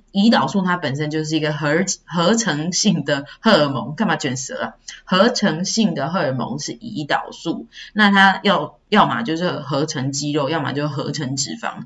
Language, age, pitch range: Chinese, 20-39, 155-205 Hz